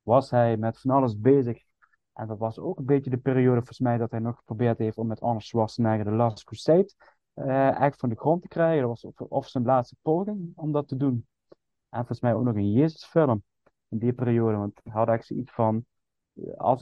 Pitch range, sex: 115-135 Hz, male